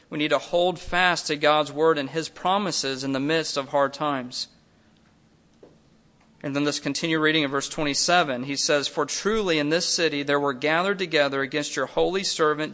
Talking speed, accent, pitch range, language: 190 wpm, American, 140-165 Hz, English